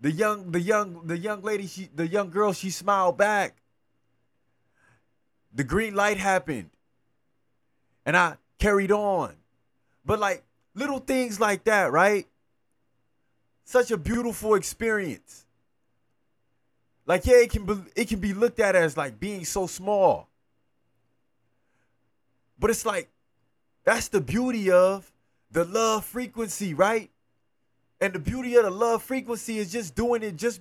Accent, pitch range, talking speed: American, 140-225 Hz, 140 wpm